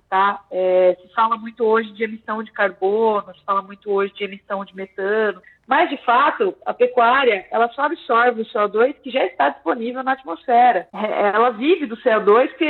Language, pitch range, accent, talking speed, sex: Portuguese, 205-255 Hz, Brazilian, 190 wpm, female